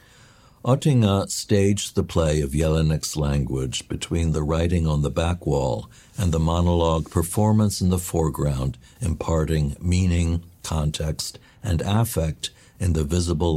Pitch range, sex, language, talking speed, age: 80-105 Hz, male, English, 130 wpm, 60-79